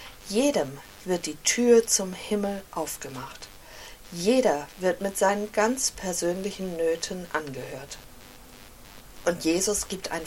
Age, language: 50-69, German